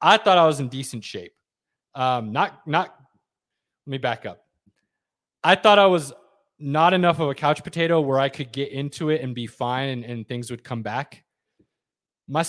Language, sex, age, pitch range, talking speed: English, male, 20-39, 115-145 Hz, 190 wpm